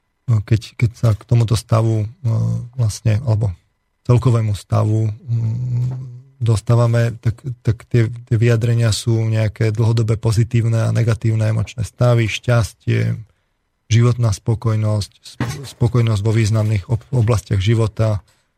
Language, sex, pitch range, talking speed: Slovak, male, 110-120 Hz, 105 wpm